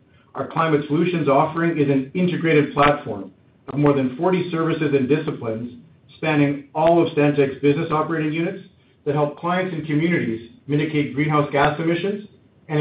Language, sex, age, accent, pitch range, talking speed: English, male, 50-69, American, 135-160 Hz, 150 wpm